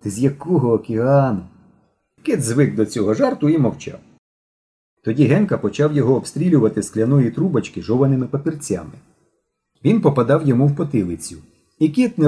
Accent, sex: native, male